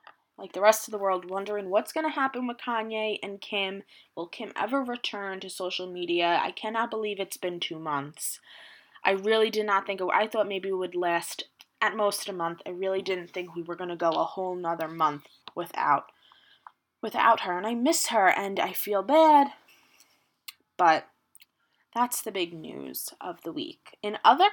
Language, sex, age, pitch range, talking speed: English, female, 10-29, 180-225 Hz, 190 wpm